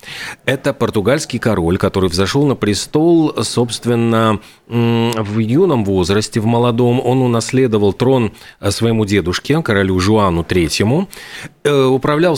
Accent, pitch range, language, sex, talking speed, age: native, 100-130 Hz, Russian, male, 105 wpm, 30-49